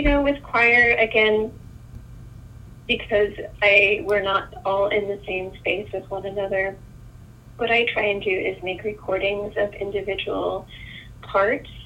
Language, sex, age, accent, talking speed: English, female, 30-49, American, 140 wpm